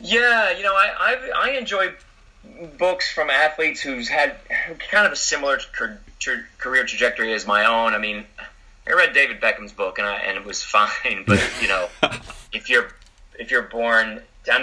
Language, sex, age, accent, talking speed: English, male, 30-49, American, 185 wpm